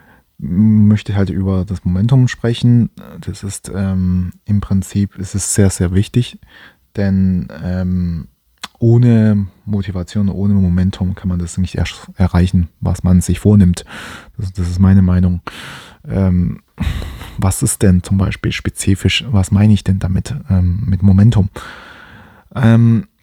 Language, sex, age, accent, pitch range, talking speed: German, male, 20-39, German, 90-105 Hz, 135 wpm